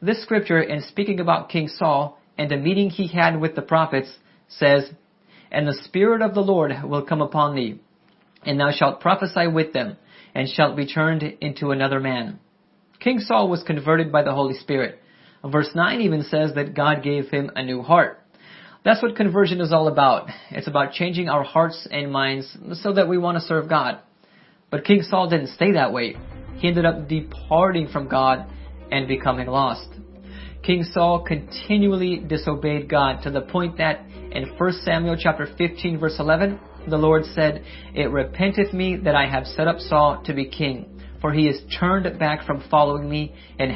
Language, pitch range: English, 140-175 Hz